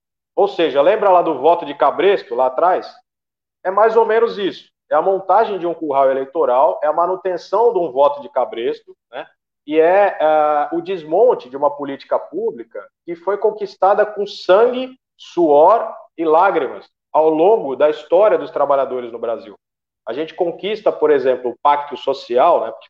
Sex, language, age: male, Portuguese, 40-59